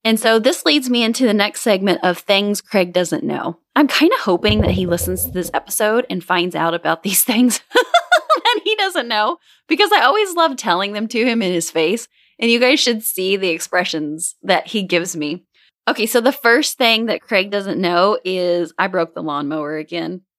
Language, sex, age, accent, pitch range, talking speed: English, female, 20-39, American, 175-245 Hz, 210 wpm